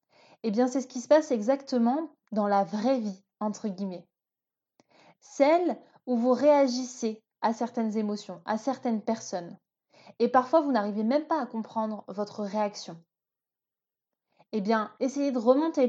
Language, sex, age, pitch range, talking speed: French, female, 20-39, 205-255 Hz, 145 wpm